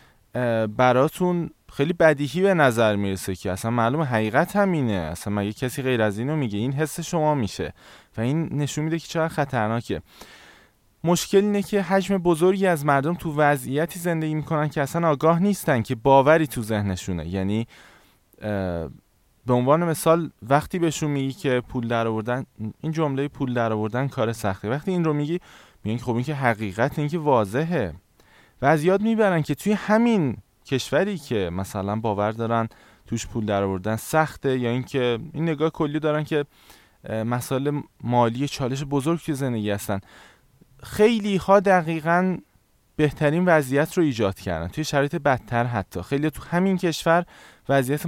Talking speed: 150 wpm